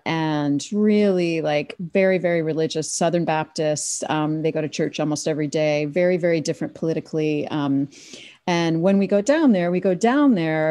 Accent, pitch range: American, 155-195 Hz